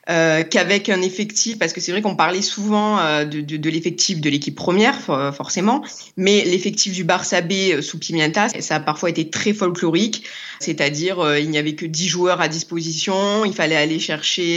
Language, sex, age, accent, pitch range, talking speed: French, female, 20-39, French, 155-195 Hz, 195 wpm